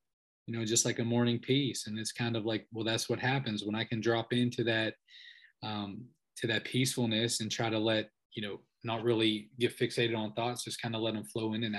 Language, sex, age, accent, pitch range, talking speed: English, male, 20-39, American, 115-135 Hz, 235 wpm